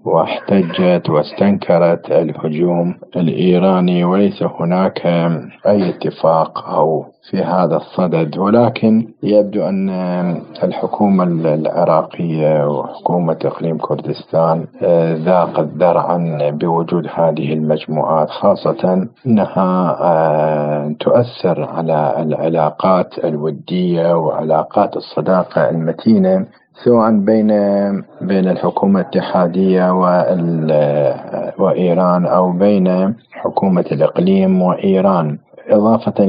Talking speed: 80 wpm